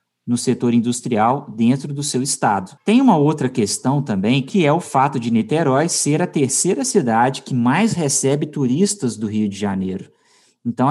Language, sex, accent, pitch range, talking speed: English, male, Brazilian, 115-155 Hz, 170 wpm